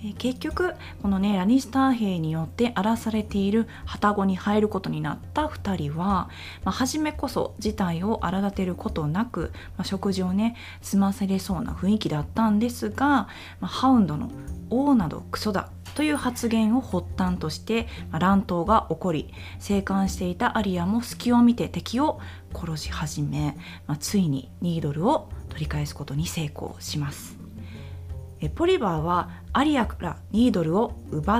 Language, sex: Japanese, female